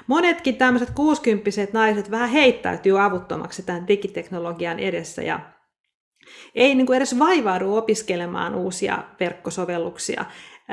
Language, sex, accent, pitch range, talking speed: Finnish, female, native, 185-240 Hz, 105 wpm